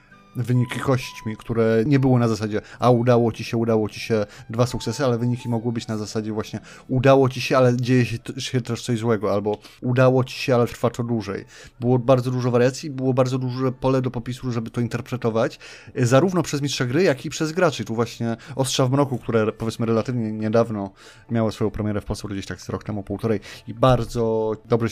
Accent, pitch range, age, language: native, 115-130 Hz, 30-49, Polish